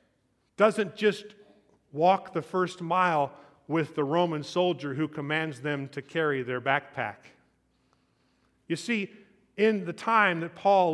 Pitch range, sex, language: 150-195 Hz, male, English